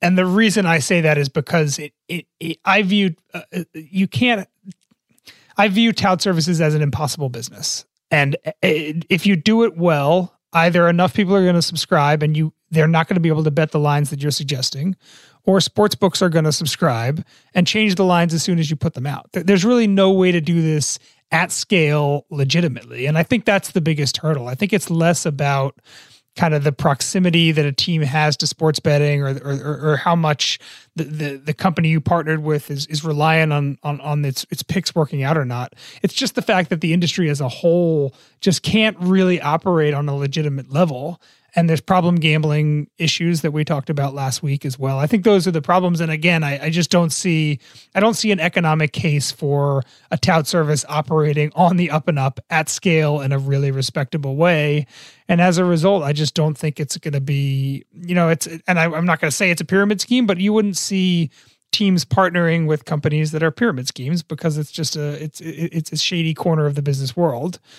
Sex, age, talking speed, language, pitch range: male, 30-49, 215 wpm, English, 145-175 Hz